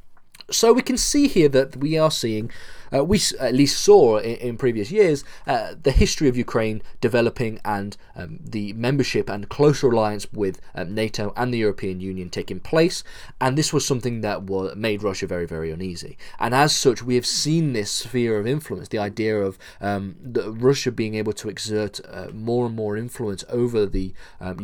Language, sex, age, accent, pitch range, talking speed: English, male, 20-39, British, 100-140 Hz, 190 wpm